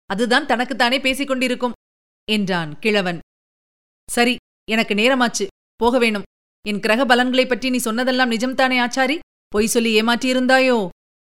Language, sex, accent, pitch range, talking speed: Tamil, female, native, 195-255 Hz, 115 wpm